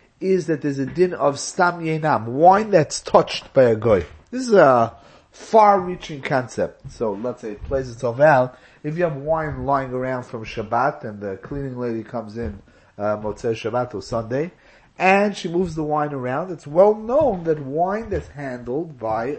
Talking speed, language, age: 185 wpm, English, 30-49